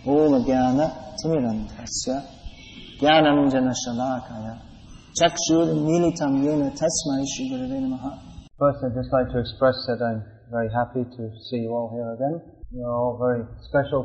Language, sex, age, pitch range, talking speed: English, male, 40-59, 125-155 Hz, 85 wpm